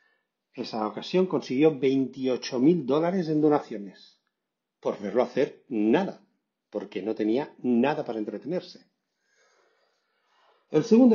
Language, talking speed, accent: Spanish, 100 wpm, Spanish